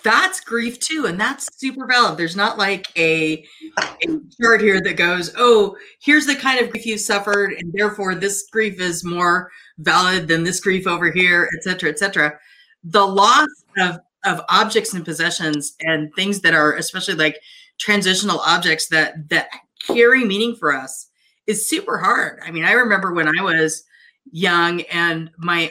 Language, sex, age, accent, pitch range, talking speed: English, female, 30-49, American, 170-245 Hz, 170 wpm